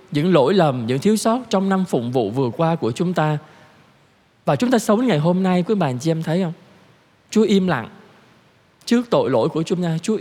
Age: 20-39